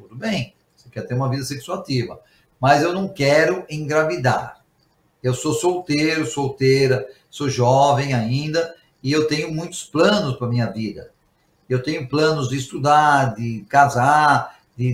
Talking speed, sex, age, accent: 145 wpm, male, 50-69, Brazilian